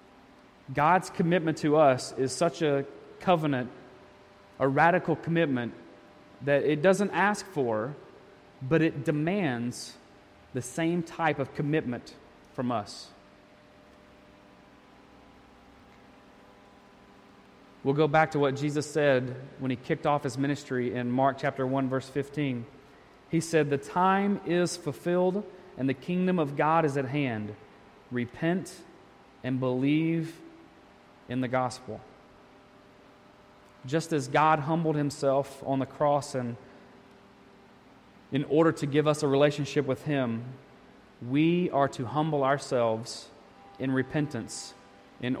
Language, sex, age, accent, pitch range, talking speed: English, male, 30-49, American, 115-150 Hz, 120 wpm